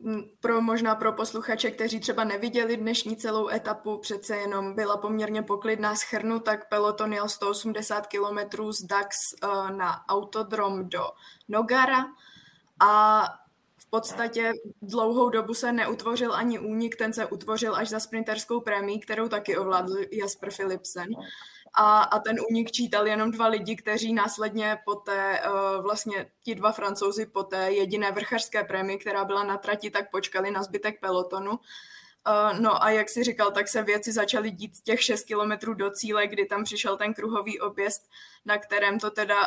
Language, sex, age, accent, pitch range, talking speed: Czech, female, 20-39, native, 200-220 Hz, 155 wpm